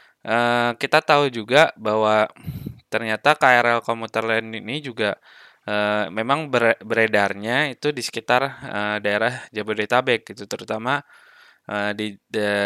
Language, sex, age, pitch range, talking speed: Indonesian, male, 20-39, 105-120 Hz, 120 wpm